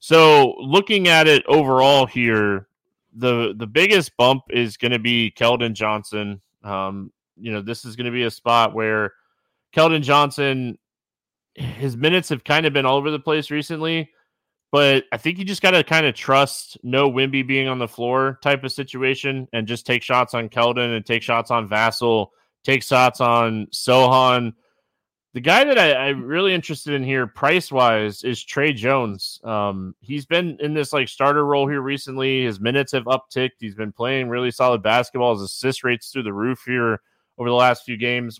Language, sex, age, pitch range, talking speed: English, male, 20-39, 115-145 Hz, 190 wpm